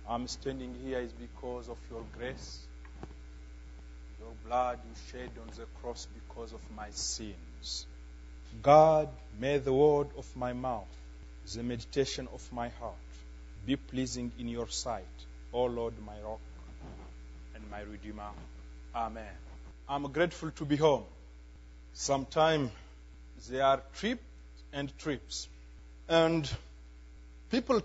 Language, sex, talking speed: English, male, 125 wpm